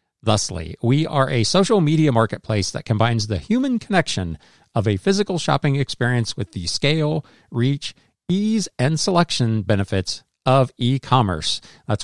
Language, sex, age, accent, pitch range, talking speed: English, male, 40-59, American, 110-150 Hz, 140 wpm